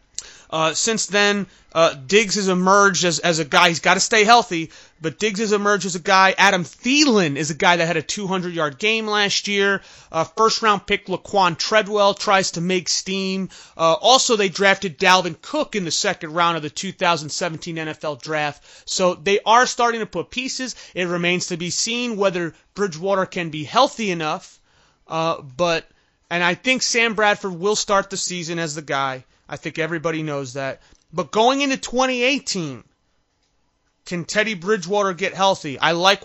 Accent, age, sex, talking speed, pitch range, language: American, 30-49, male, 175 wpm, 165-210 Hz, English